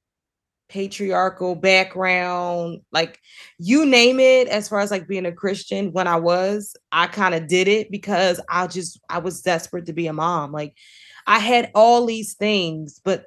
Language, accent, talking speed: English, American, 170 wpm